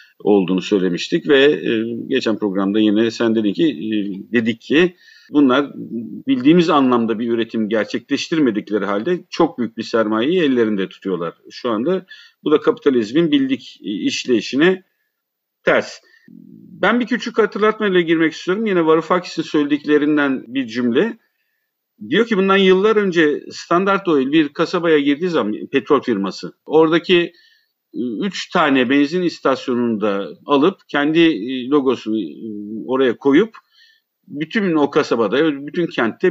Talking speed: 120 wpm